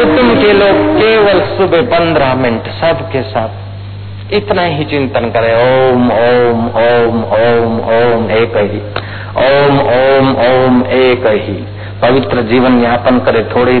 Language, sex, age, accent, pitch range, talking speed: Hindi, male, 50-69, native, 100-125 Hz, 130 wpm